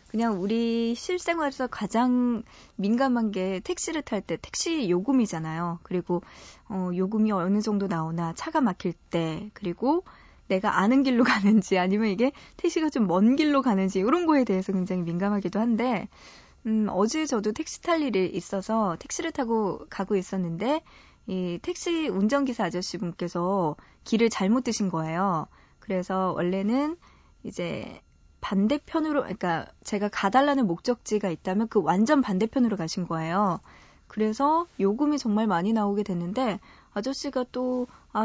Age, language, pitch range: 20-39, Korean, 185-245 Hz